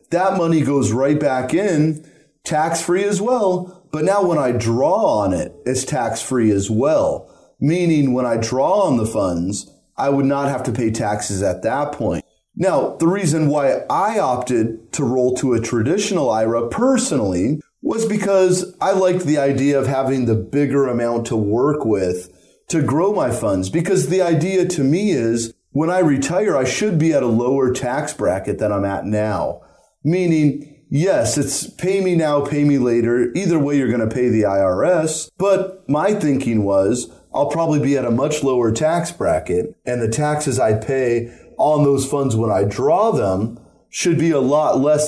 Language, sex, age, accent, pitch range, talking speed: English, male, 30-49, American, 115-160 Hz, 180 wpm